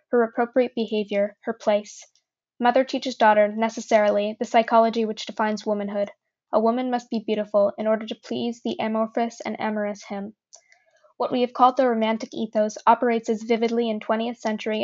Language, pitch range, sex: English, 210-240 Hz, female